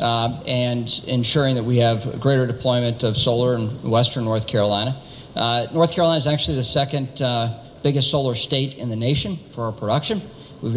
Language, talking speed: English, 185 wpm